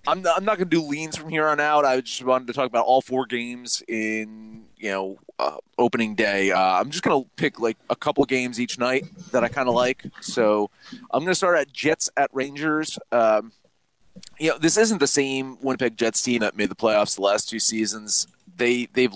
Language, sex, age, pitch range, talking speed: English, male, 30-49, 105-130 Hz, 230 wpm